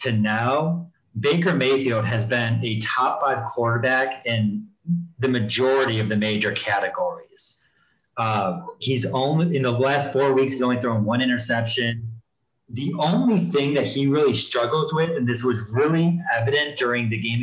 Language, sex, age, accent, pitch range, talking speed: English, male, 30-49, American, 115-145 Hz, 160 wpm